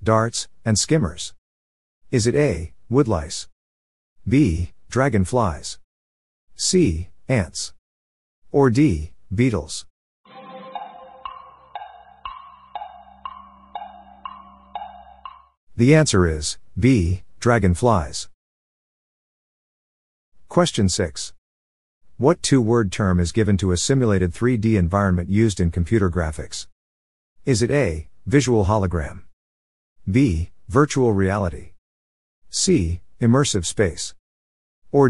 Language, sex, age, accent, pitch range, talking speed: English, male, 50-69, American, 85-135 Hz, 80 wpm